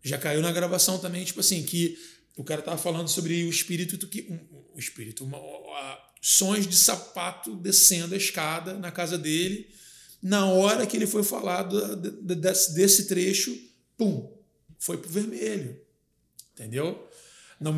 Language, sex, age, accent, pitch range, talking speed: Portuguese, male, 20-39, Brazilian, 170-215 Hz, 150 wpm